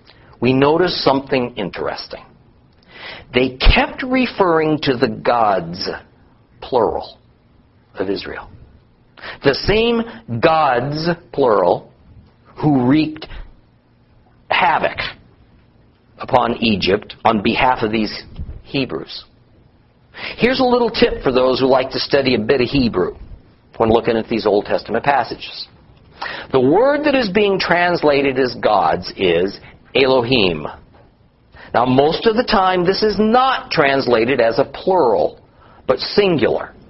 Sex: male